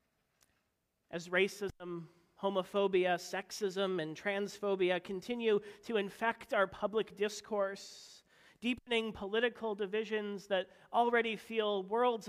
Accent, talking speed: American, 95 wpm